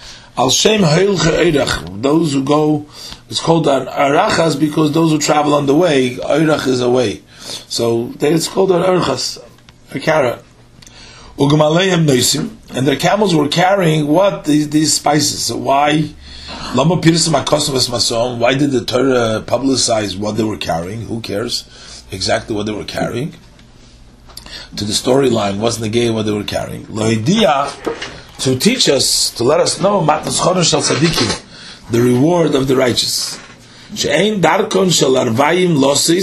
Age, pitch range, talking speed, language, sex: 30-49, 120-155 Hz, 120 wpm, English, male